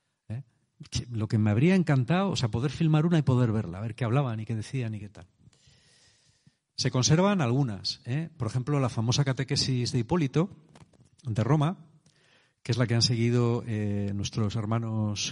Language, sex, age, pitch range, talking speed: Spanish, male, 40-59, 110-150 Hz, 180 wpm